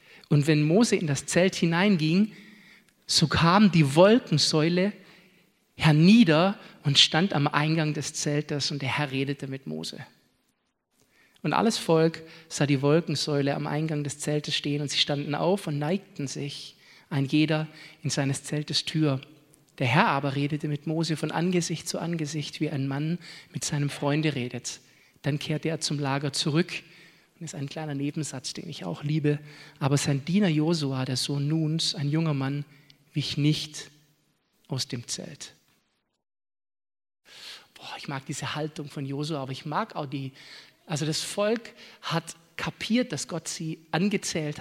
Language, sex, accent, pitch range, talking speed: German, male, German, 145-165 Hz, 155 wpm